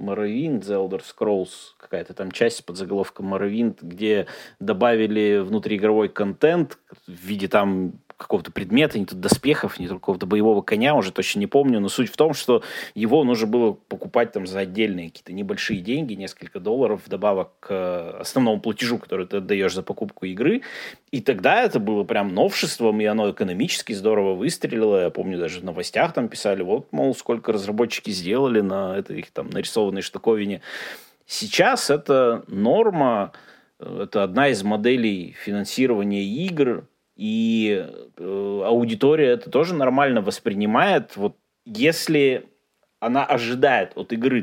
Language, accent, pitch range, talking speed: Russian, native, 100-155 Hz, 145 wpm